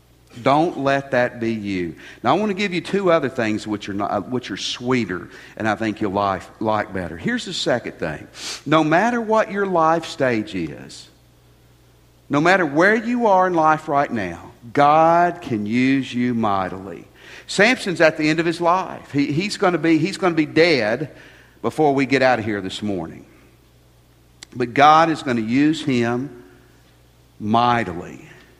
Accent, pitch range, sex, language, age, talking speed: American, 115-165 Hz, male, English, 50-69, 175 wpm